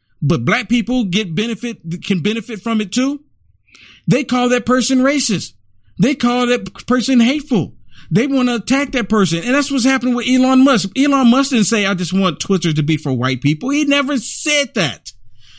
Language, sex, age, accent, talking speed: English, male, 50-69, American, 195 wpm